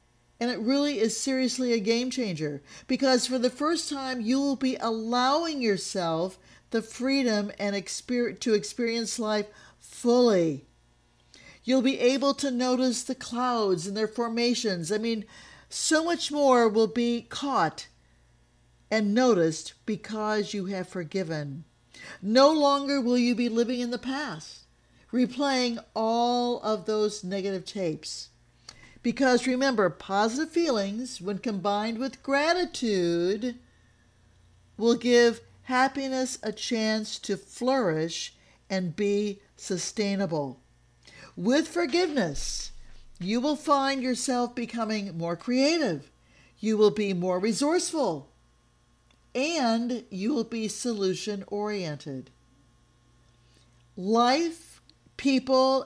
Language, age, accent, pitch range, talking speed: English, 50-69, American, 190-255 Hz, 110 wpm